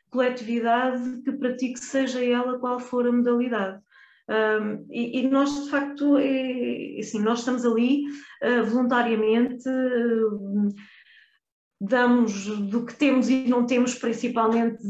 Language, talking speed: Portuguese, 105 wpm